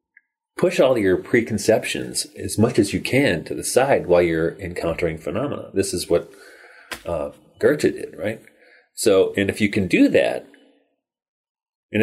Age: 30-49